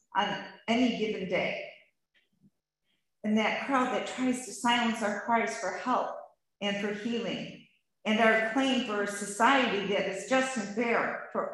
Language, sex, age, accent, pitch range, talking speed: English, female, 40-59, American, 210-250 Hz, 155 wpm